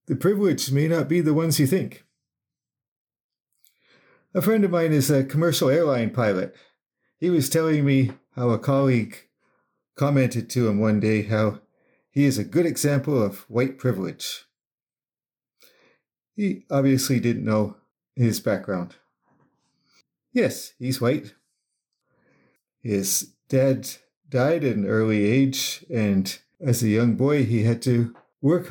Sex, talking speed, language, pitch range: male, 135 wpm, English, 115-140 Hz